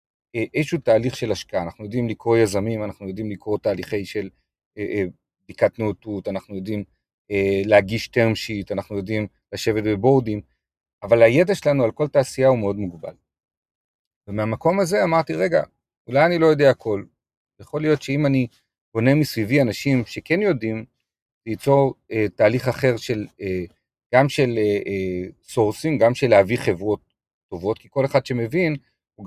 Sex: male